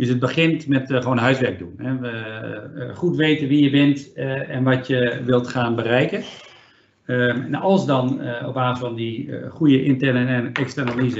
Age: 50-69